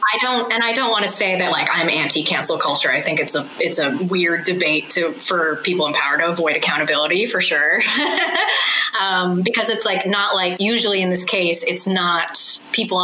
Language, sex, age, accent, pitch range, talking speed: English, female, 20-39, American, 180-235 Hz, 205 wpm